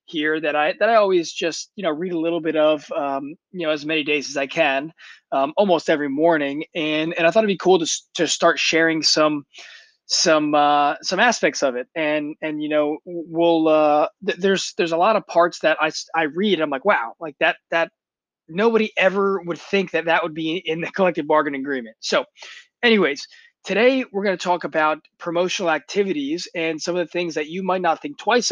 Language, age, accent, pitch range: English, 20-39, American, 155-195 Hz